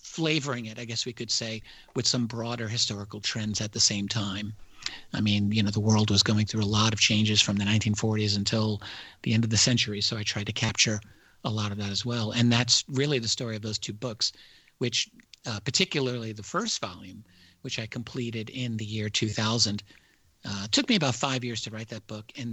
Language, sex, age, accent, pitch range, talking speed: English, male, 50-69, American, 105-120 Hz, 220 wpm